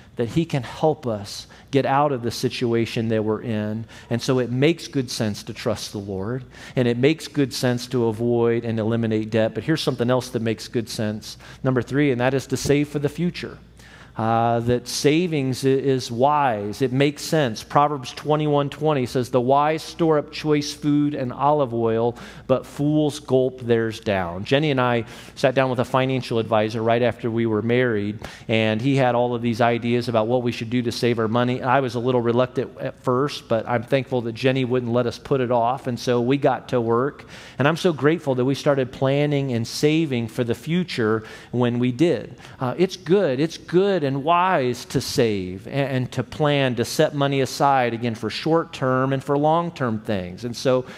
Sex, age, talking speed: male, 40-59, 200 wpm